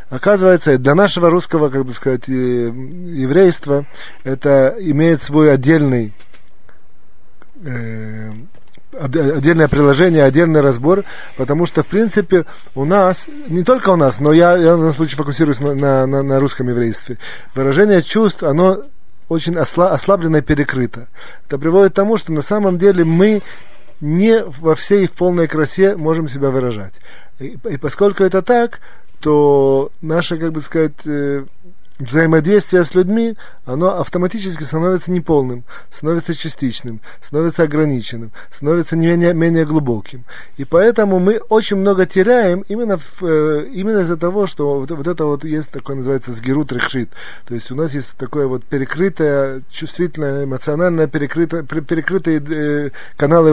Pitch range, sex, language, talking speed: 135-175 Hz, male, Russian, 140 wpm